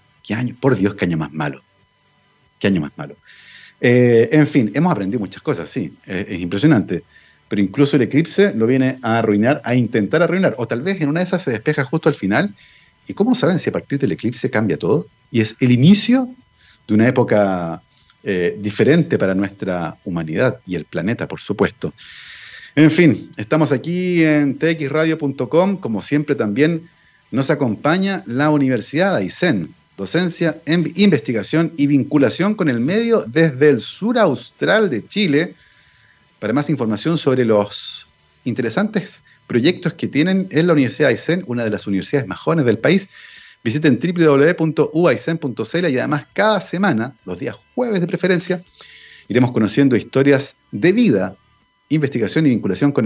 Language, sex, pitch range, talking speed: Spanish, male, 115-165 Hz, 160 wpm